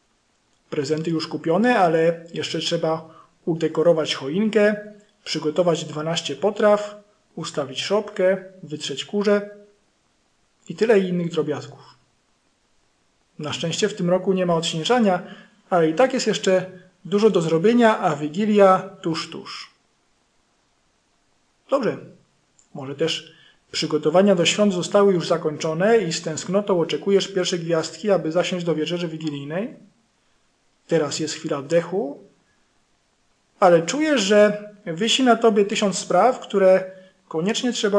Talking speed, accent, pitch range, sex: 115 wpm, native, 160-210 Hz, male